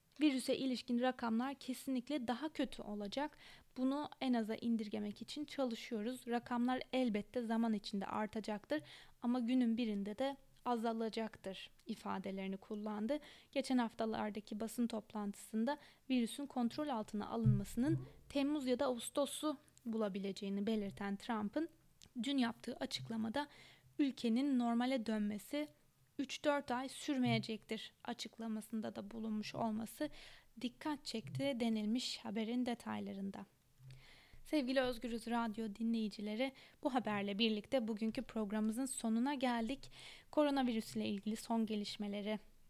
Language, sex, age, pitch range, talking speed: Turkish, female, 20-39, 215-255 Hz, 105 wpm